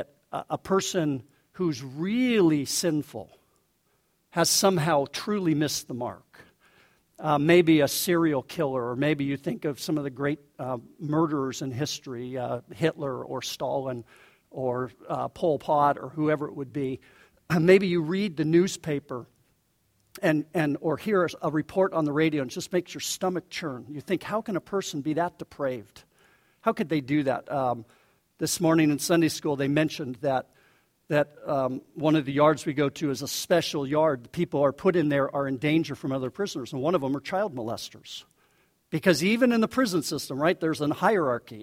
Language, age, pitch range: English, 50-69, 140-180 Hz